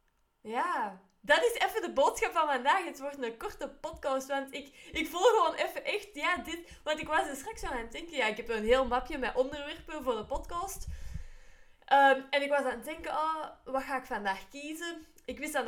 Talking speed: 220 wpm